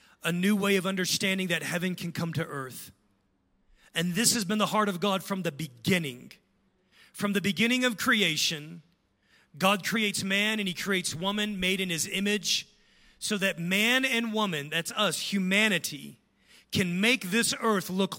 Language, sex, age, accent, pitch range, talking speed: English, male, 40-59, American, 185-235 Hz, 170 wpm